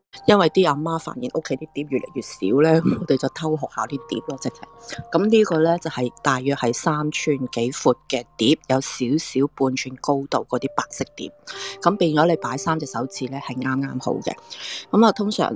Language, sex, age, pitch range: Chinese, female, 30-49, 130-160 Hz